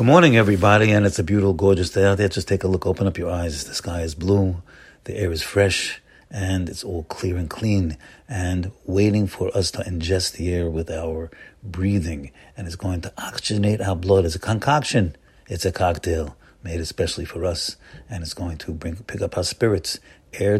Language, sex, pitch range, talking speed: English, male, 85-105 Hz, 205 wpm